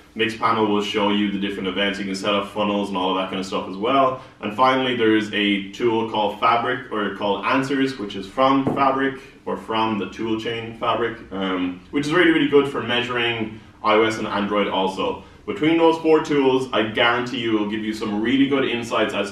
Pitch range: 105-135 Hz